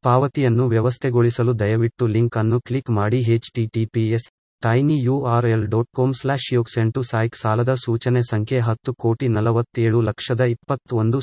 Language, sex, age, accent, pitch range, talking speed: Kannada, male, 30-49, native, 110-125 Hz, 105 wpm